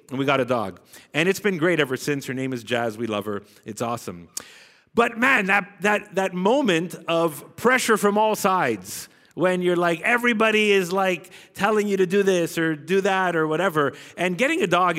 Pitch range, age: 145-195 Hz, 30-49